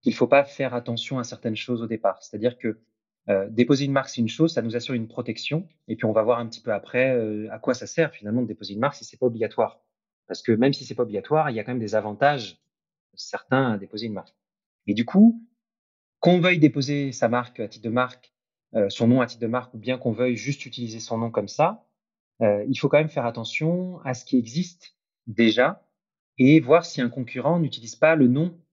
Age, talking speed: 30-49, 240 wpm